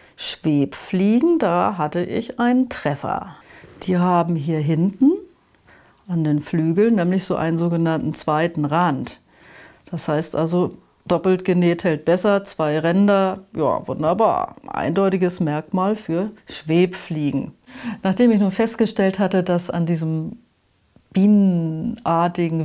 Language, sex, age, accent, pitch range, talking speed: German, female, 40-59, German, 160-195 Hz, 115 wpm